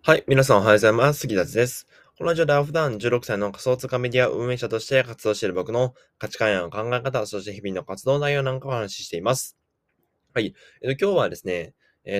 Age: 20-39